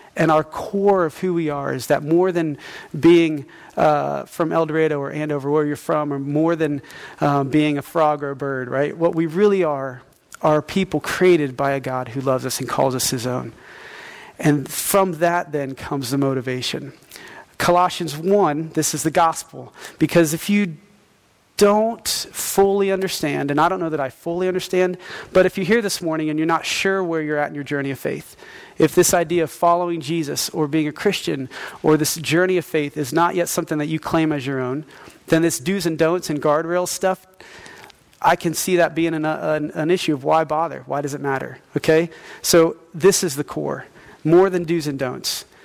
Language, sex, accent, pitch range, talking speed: English, male, American, 150-180 Hz, 205 wpm